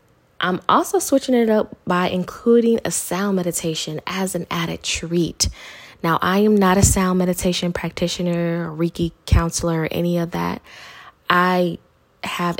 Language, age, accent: English, 20-39, American